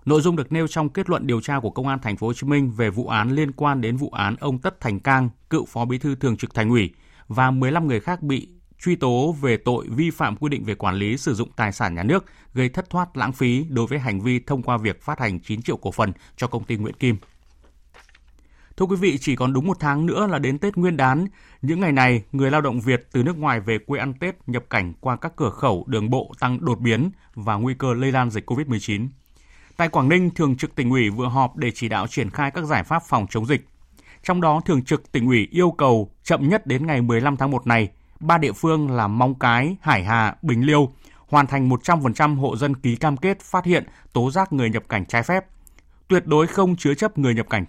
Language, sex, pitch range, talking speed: Vietnamese, male, 115-150 Hz, 250 wpm